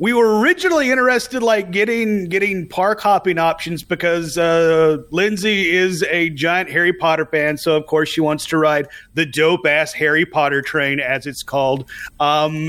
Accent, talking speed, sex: American, 170 wpm, male